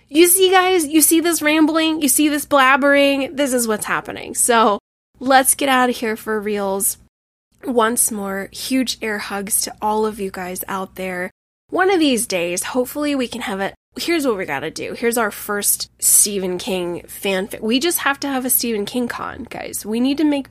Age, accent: 10-29, American